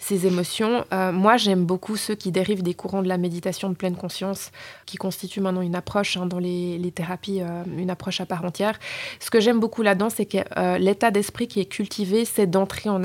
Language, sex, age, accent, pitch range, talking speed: French, female, 20-39, French, 185-225 Hz, 225 wpm